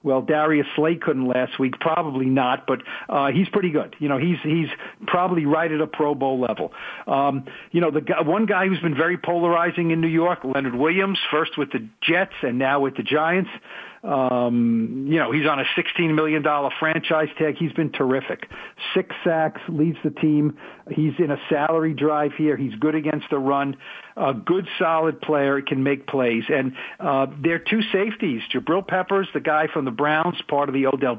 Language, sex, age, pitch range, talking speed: English, male, 50-69, 140-175 Hz, 195 wpm